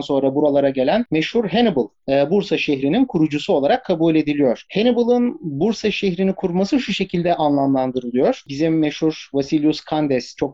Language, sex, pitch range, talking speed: Turkish, male, 135-175 Hz, 130 wpm